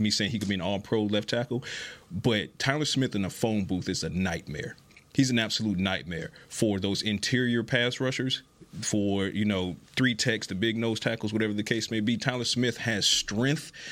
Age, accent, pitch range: 30-49, American, 100-120 Hz